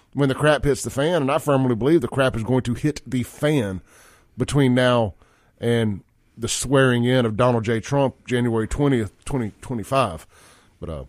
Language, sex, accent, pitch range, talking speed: English, male, American, 115-140 Hz, 170 wpm